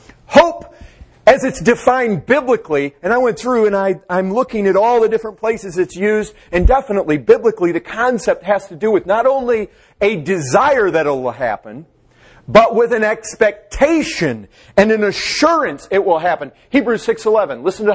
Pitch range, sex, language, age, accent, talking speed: 200-265 Hz, male, English, 40-59, American, 165 wpm